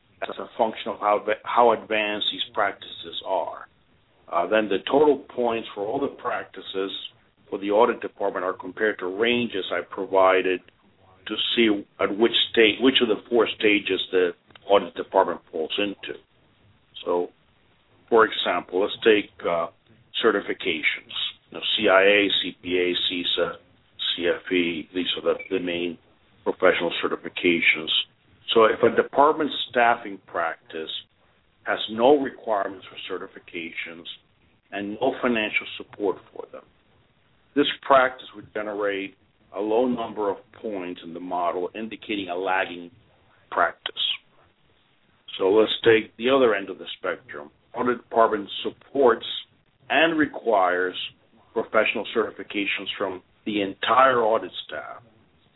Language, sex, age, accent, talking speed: English, male, 50-69, American, 125 wpm